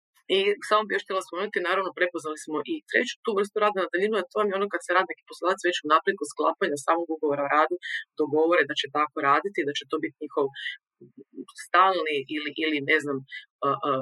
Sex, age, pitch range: female, 40-59, 150-205 Hz